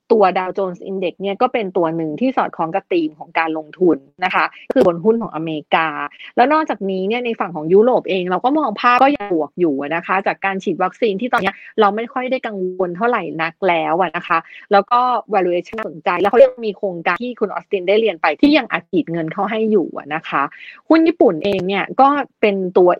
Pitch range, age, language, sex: 180-225 Hz, 20-39, Thai, female